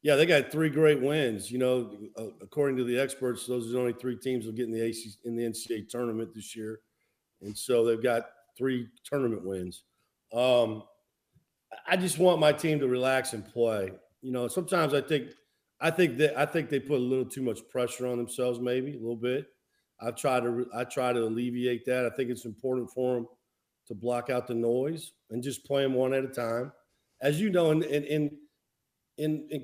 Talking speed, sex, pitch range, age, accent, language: 210 wpm, male, 120-145 Hz, 50-69, American, English